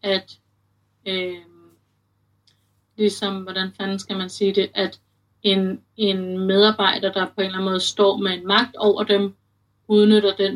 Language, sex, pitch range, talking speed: Danish, female, 185-215 Hz, 155 wpm